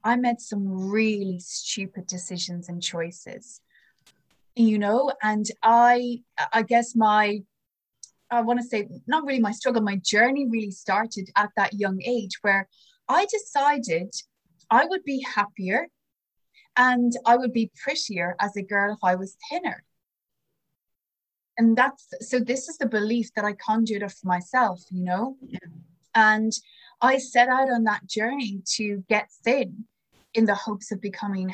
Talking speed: 150 wpm